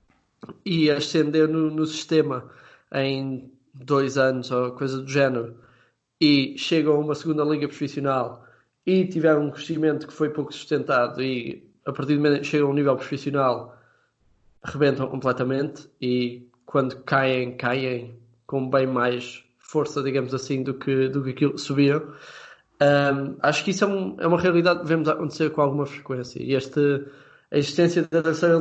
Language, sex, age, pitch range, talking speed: Portuguese, male, 20-39, 135-155 Hz, 160 wpm